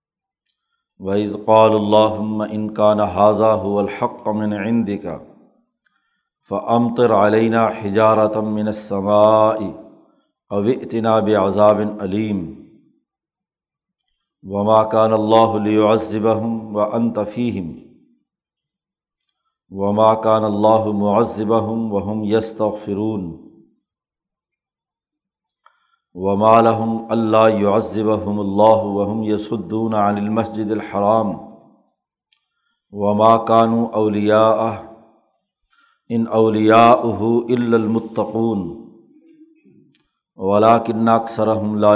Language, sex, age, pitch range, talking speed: Urdu, male, 50-69, 105-115 Hz, 60 wpm